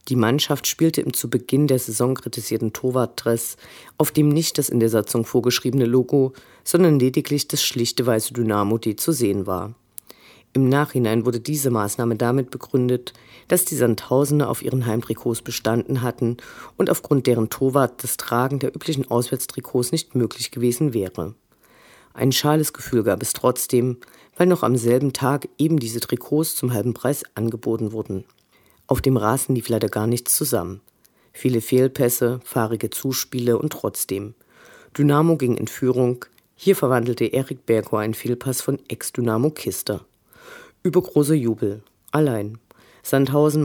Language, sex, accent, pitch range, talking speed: German, female, German, 115-140 Hz, 145 wpm